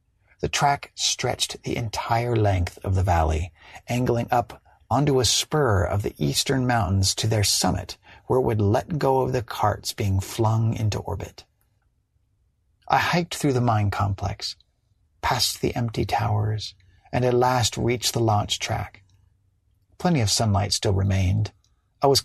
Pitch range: 95-120 Hz